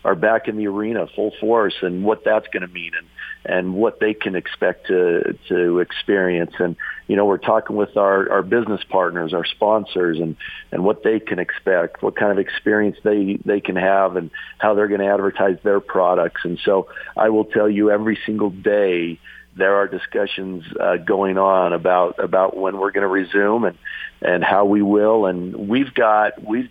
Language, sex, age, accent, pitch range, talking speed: English, male, 50-69, American, 95-105 Hz, 195 wpm